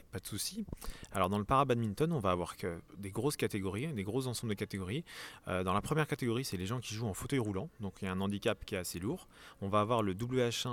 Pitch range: 95-115 Hz